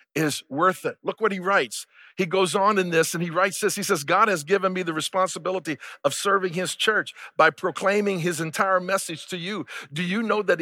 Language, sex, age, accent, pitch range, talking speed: English, male, 50-69, American, 175-195 Hz, 220 wpm